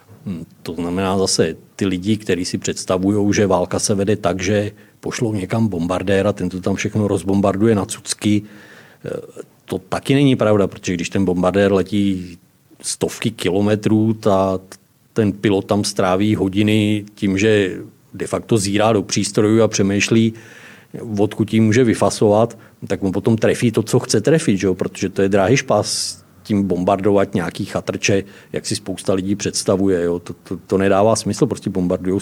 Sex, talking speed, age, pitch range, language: male, 160 wpm, 40-59, 100-120 Hz, Czech